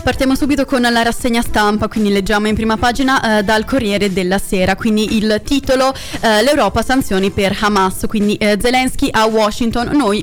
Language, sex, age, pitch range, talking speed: Italian, female, 20-39, 200-235 Hz, 175 wpm